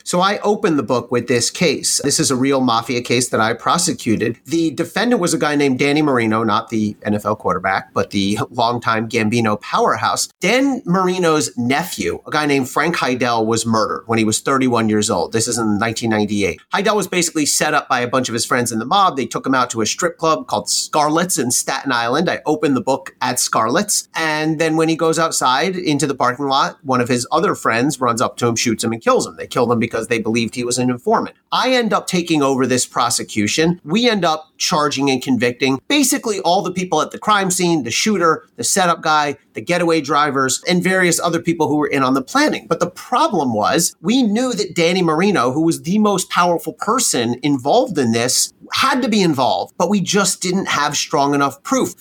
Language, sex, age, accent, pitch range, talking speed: English, male, 40-59, American, 125-180 Hz, 220 wpm